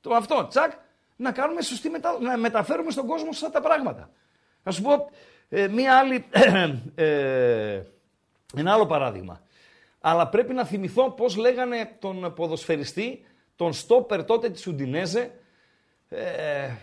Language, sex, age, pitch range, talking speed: Greek, male, 50-69, 170-245 Hz, 140 wpm